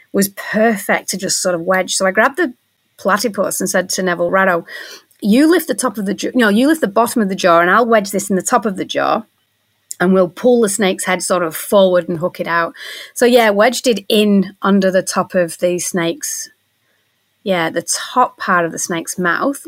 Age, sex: 30-49, female